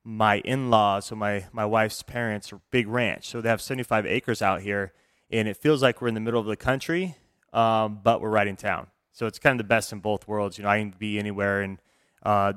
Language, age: English, 20-39